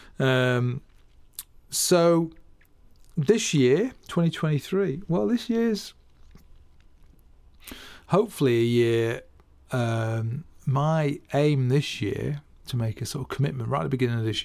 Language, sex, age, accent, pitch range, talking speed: English, male, 40-59, British, 110-145 Hz, 115 wpm